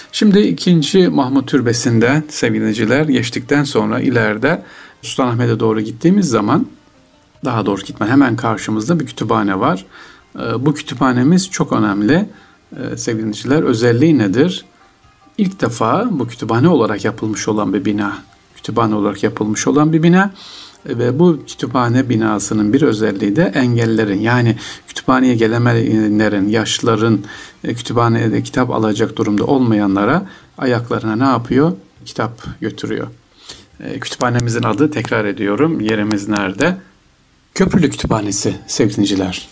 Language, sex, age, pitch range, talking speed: Turkish, male, 50-69, 105-145 Hz, 110 wpm